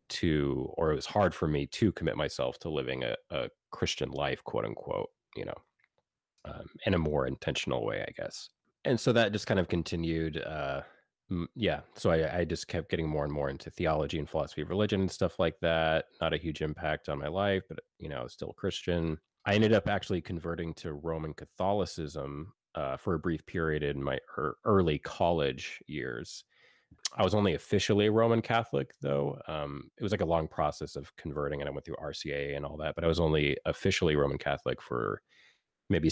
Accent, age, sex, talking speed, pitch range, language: American, 30-49, male, 205 wpm, 75-95 Hz, English